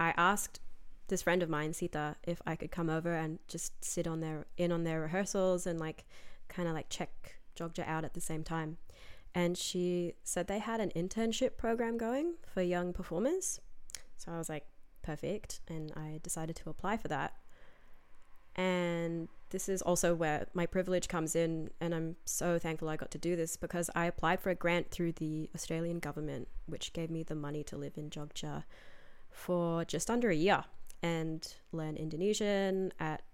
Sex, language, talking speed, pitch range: female, English, 185 wpm, 160-180 Hz